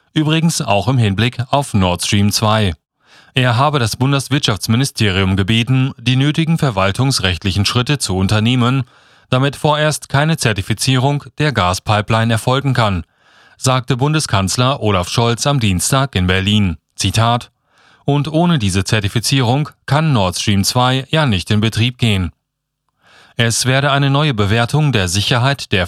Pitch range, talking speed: 105-135 Hz, 130 wpm